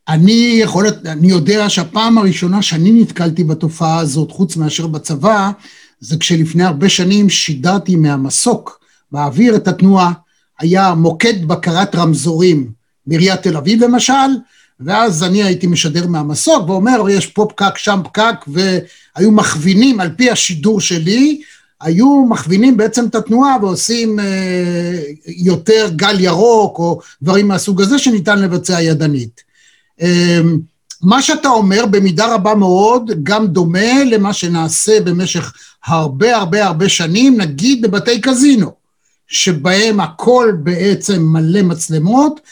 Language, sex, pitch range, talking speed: Hebrew, male, 170-220 Hz, 125 wpm